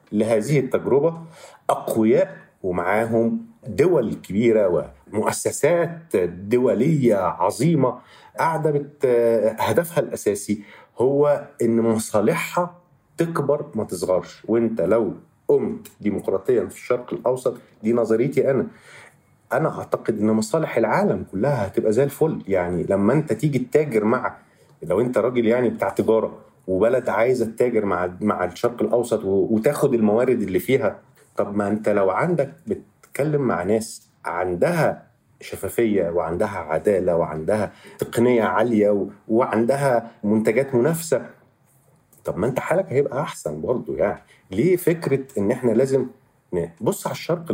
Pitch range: 110-150 Hz